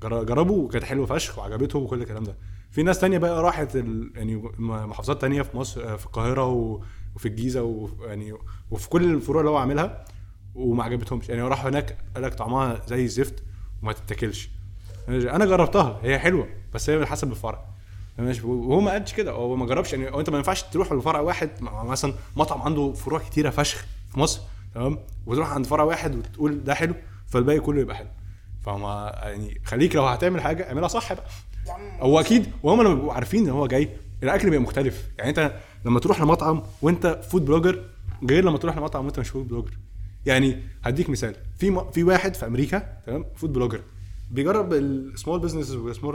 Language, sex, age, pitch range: Arabic, male, 20-39, 100-150 Hz